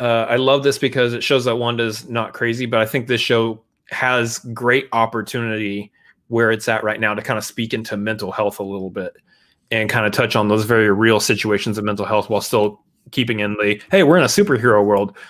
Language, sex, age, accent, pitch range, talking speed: English, male, 30-49, American, 110-130 Hz, 225 wpm